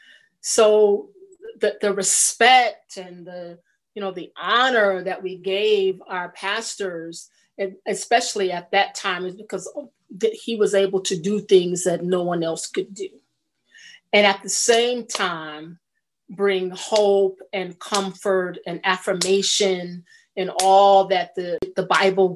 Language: English